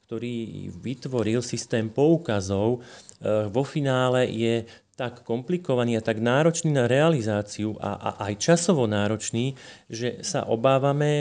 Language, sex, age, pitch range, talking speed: Slovak, male, 30-49, 110-135 Hz, 110 wpm